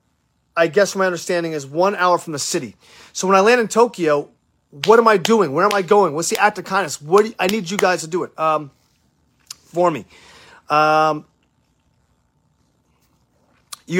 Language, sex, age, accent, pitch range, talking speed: English, male, 30-49, American, 140-190 Hz, 190 wpm